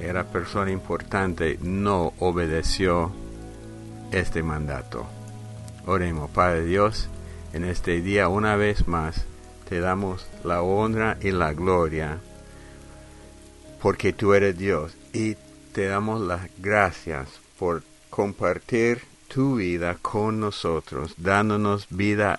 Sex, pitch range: male, 85-105 Hz